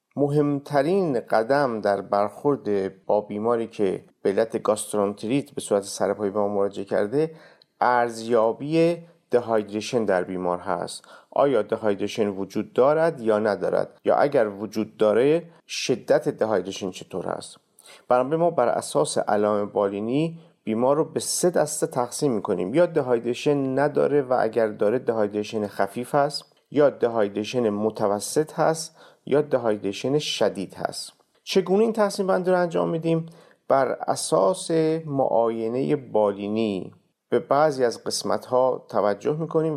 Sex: male